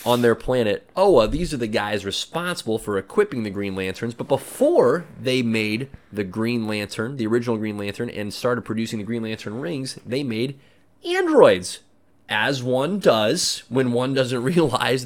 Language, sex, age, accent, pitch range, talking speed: English, male, 30-49, American, 100-125 Hz, 165 wpm